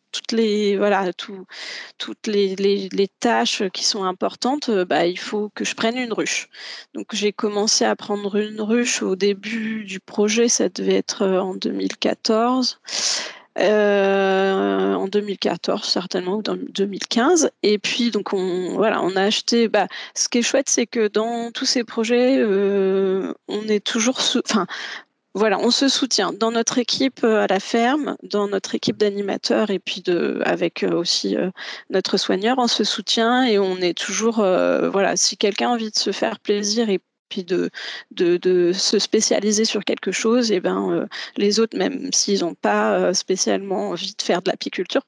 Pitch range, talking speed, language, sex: 190-235 Hz, 170 wpm, French, female